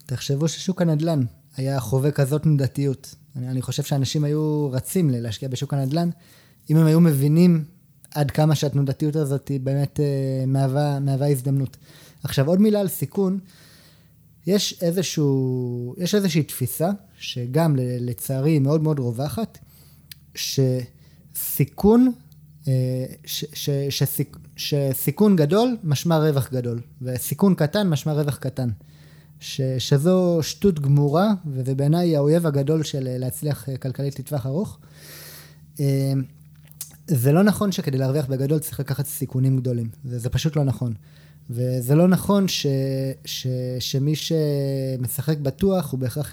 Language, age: Hebrew, 20-39